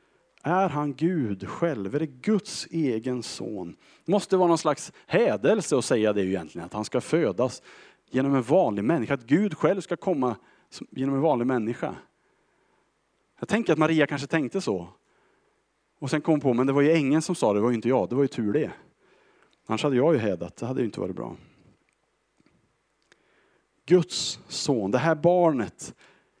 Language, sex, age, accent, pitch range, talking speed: Swedish, male, 30-49, Norwegian, 110-160 Hz, 180 wpm